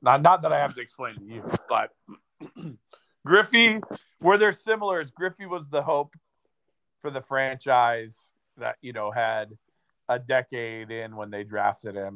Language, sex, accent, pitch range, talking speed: English, male, American, 105-130 Hz, 170 wpm